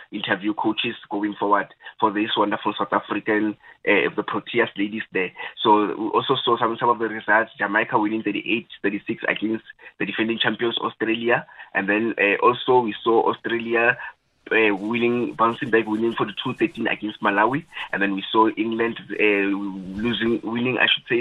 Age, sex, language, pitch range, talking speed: 20-39, male, English, 105-120 Hz, 165 wpm